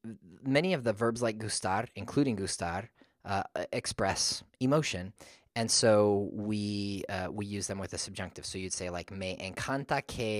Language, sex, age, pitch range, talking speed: English, male, 20-39, 90-105 Hz, 165 wpm